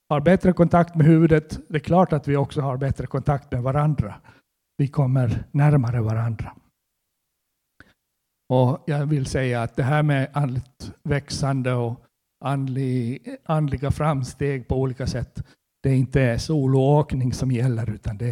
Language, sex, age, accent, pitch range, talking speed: Swedish, male, 60-79, native, 115-150 Hz, 150 wpm